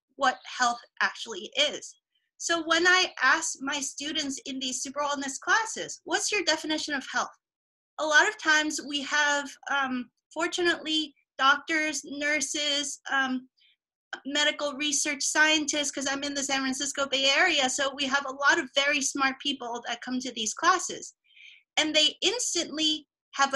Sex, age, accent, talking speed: female, 30-49, American, 155 wpm